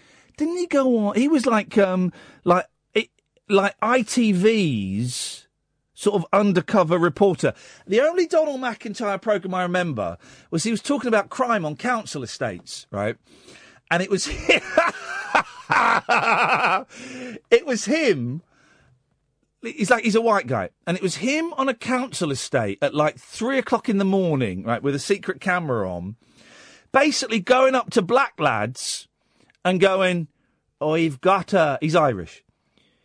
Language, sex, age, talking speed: English, male, 40-59, 145 wpm